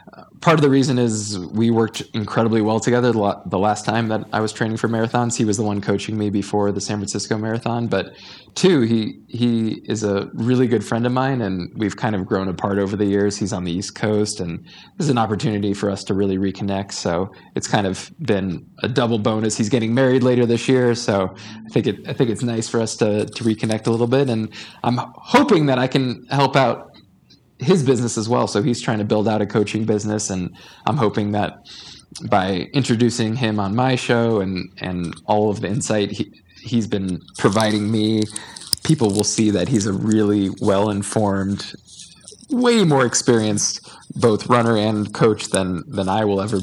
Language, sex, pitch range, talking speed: English, male, 100-115 Hz, 200 wpm